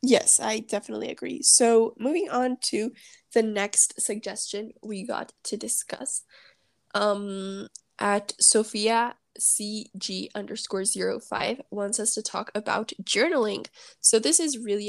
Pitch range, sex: 200-235 Hz, female